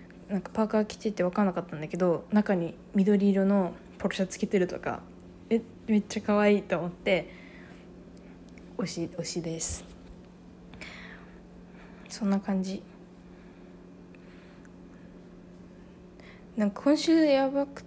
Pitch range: 180-215 Hz